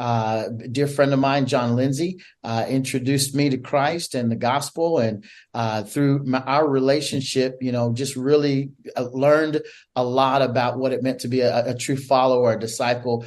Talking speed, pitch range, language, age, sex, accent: 175 wpm, 120-140 Hz, English, 40-59, male, American